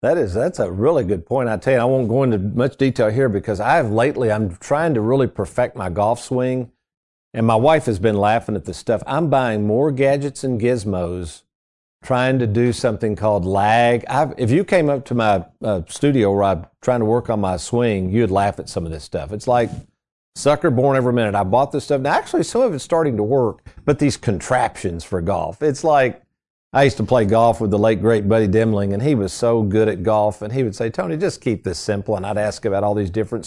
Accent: American